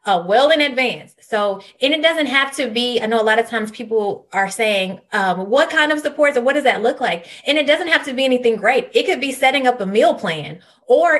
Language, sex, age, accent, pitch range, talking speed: English, female, 20-39, American, 205-265 Hz, 255 wpm